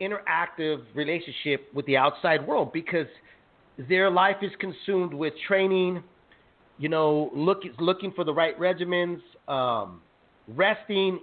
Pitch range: 155-210 Hz